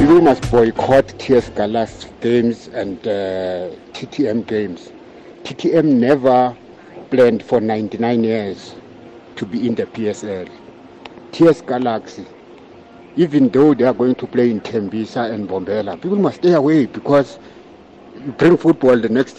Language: English